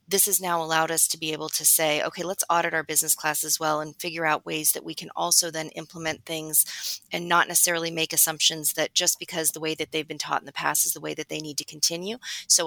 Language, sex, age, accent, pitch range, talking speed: English, female, 30-49, American, 155-170 Hz, 260 wpm